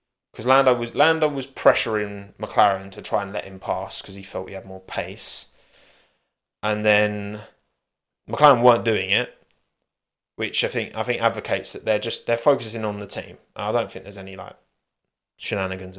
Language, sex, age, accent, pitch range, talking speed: English, male, 20-39, British, 95-120 Hz, 175 wpm